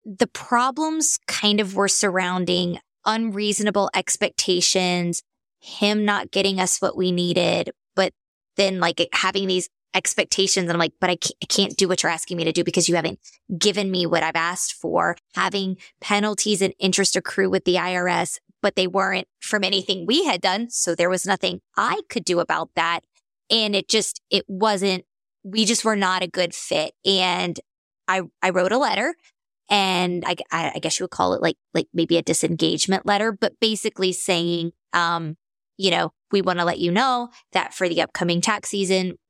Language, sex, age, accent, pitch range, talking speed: English, female, 20-39, American, 175-205 Hz, 180 wpm